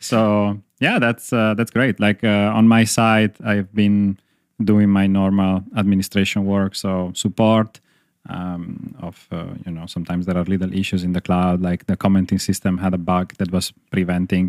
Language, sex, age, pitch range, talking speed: English, male, 30-49, 90-105 Hz, 180 wpm